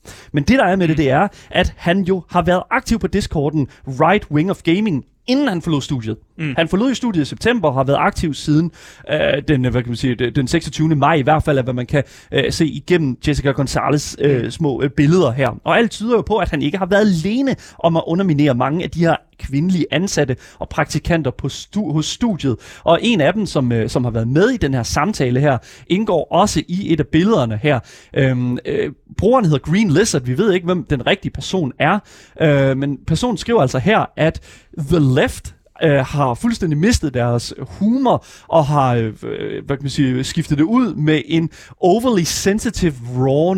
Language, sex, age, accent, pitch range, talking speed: Danish, male, 30-49, native, 135-180 Hz, 205 wpm